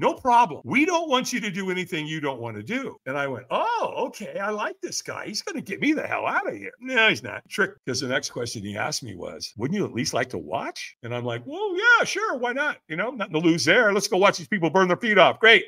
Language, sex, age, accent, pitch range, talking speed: English, male, 50-69, American, 160-250 Hz, 290 wpm